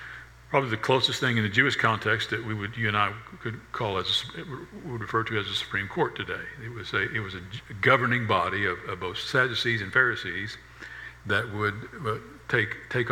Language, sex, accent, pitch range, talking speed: English, male, American, 100-125 Hz, 200 wpm